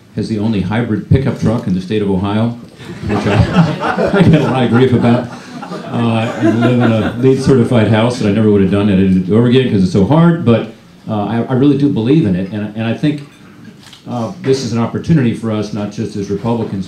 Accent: American